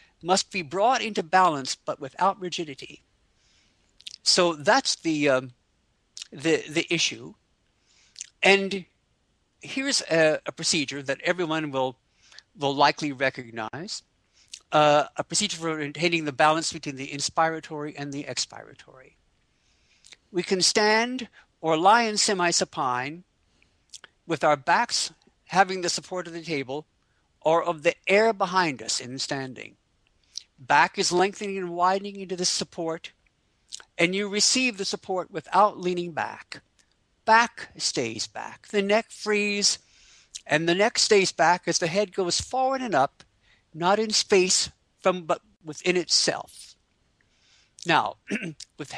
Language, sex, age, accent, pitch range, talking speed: English, male, 60-79, American, 155-205 Hz, 130 wpm